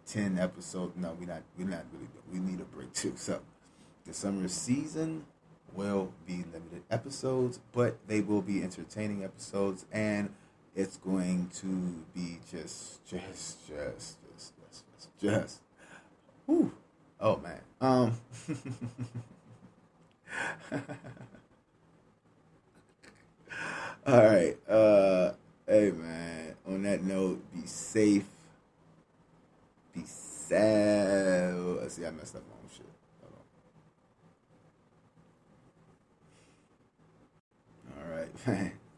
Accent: American